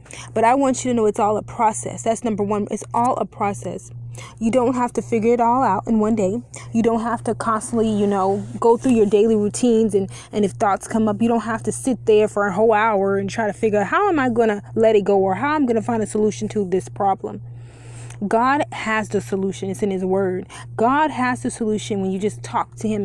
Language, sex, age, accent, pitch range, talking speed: English, female, 20-39, American, 185-225 Hz, 255 wpm